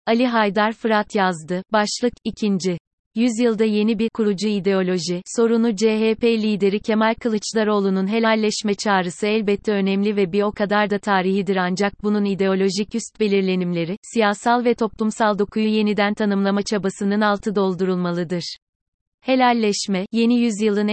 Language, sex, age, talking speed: Turkish, female, 30-49, 125 wpm